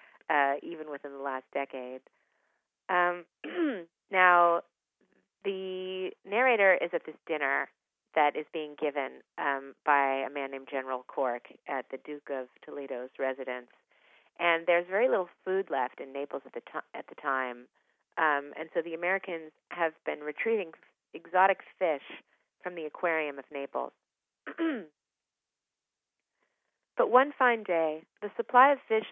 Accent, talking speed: American, 135 wpm